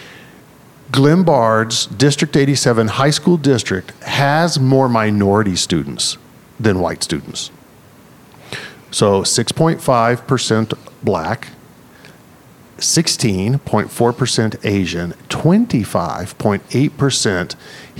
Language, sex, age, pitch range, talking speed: English, male, 50-69, 105-140 Hz, 65 wpm